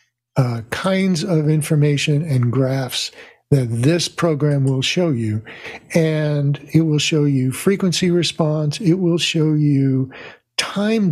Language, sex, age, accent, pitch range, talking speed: English, male, 60-79, American, 130-160 Hz, 130 wpm